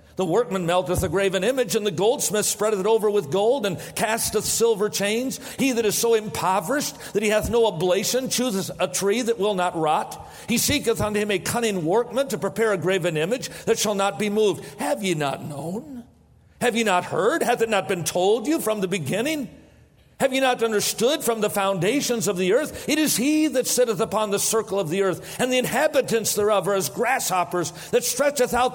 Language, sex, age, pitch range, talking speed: English, male, 50-69, 195-245 Hz, 210 wpm